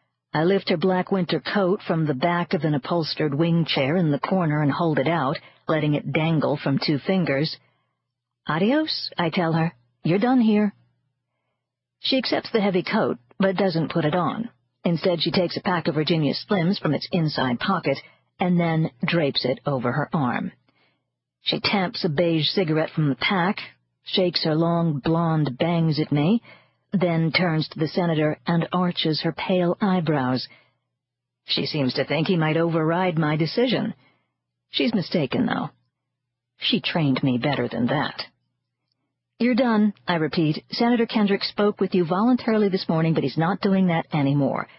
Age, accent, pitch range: 50-69, American, 140-185 Hz